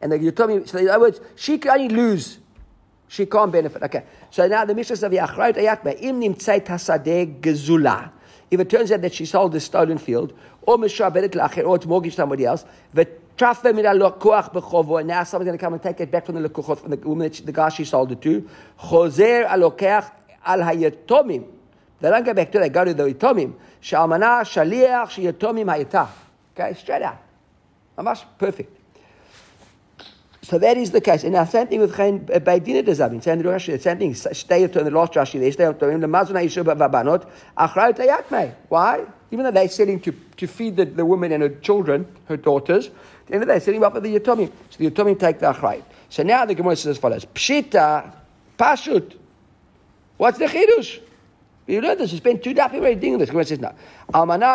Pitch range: 160-215 Hz